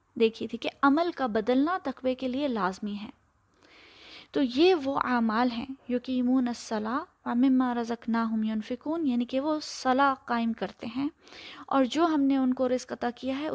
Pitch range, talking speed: 245-305 Hz, 175 wpm